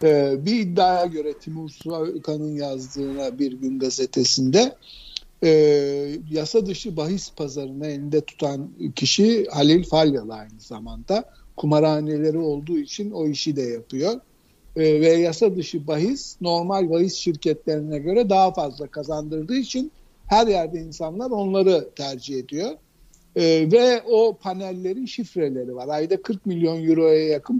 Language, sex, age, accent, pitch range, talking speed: Turkish, male, 60-79, native, 145-190 Hz, 120 wpm